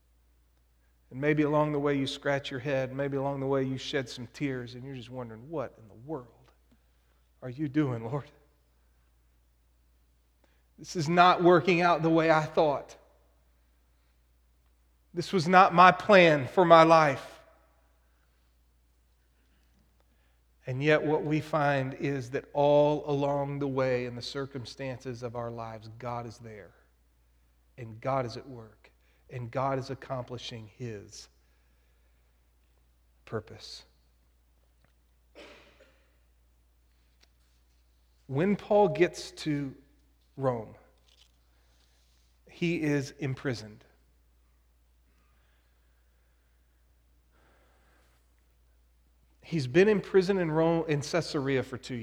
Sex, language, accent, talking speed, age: male, English, American, 110 wpm, 40-59